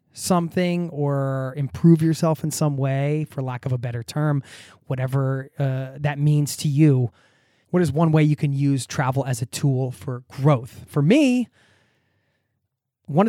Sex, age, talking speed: male, 20-39, 160 wpm